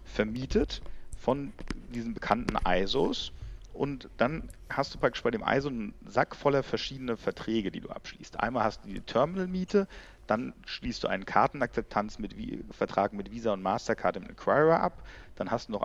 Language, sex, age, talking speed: German, male, 40-59, 165 wpm